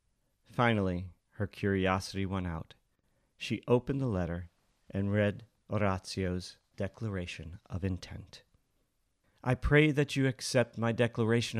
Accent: American